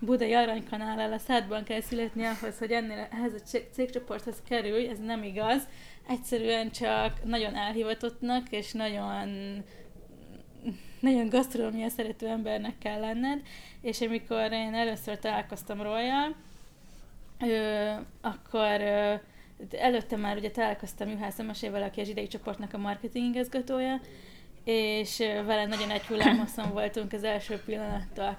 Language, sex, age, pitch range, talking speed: Hungarian, female, 20-39, 210-235 Hz, 120 wpm